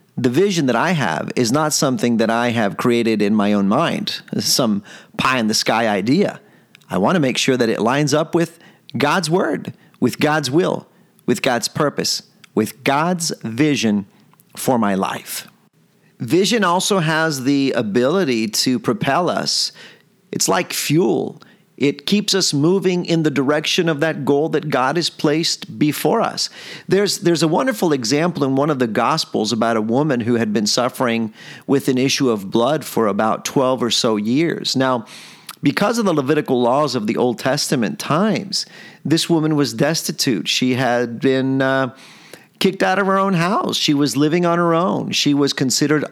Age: 40-59